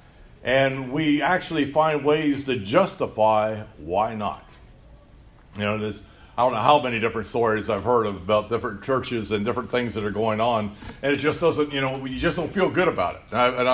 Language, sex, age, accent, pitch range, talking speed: English, male, 50-69, American, 110-165 Hz, 205 wpm